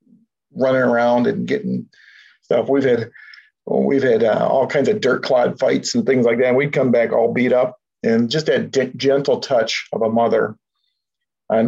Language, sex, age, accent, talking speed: English, male, 50-69, American, 190 wpm